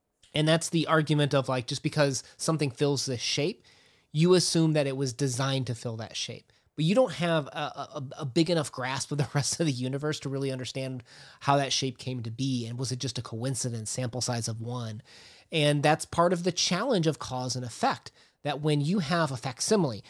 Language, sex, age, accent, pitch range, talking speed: English, male, 30-49, American, 130-160 Hz, 220 wpm